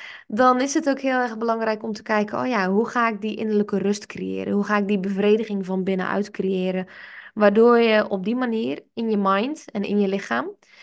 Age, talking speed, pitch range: 20-39, 215 wpm, 200-235 Hz